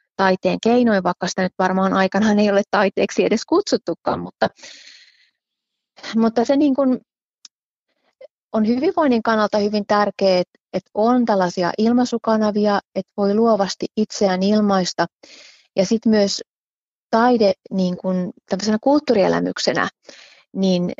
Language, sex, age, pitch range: Finnish, female, 30-49, 185-230 Hz